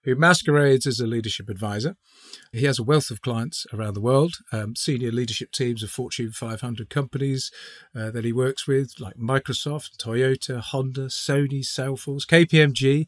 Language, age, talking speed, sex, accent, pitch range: English, 40-59, 160 wpm, male, British, 115-150 Hz